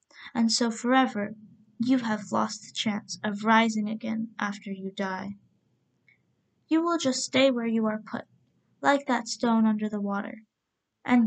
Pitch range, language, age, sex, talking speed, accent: 210-250 Hz, English, 10-29, female, 155 wpm, American